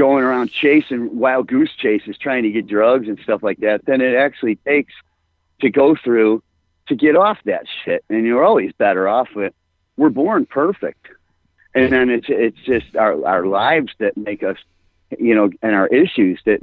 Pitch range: 90-125 Hz